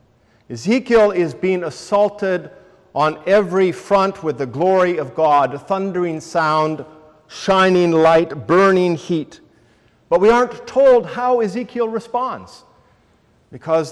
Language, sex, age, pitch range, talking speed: English, male, 50-69, 130-175 Hz, 115 wpm